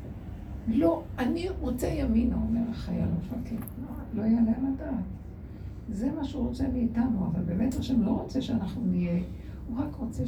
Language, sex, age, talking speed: Hebrew, female, 60-79, 150 wpm